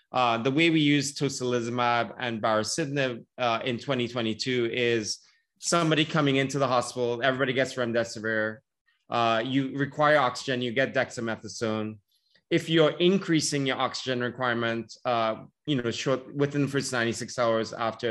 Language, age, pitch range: English, 20-39, 115-135 Hz